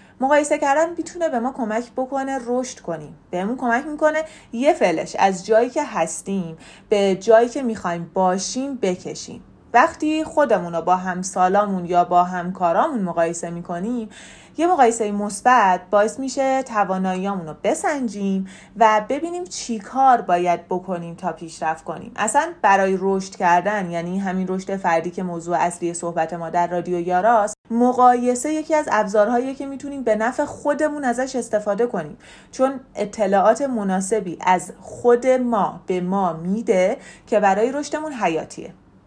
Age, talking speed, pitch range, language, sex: 30-49, 140 wpm, 180-245 Hz, Persian, female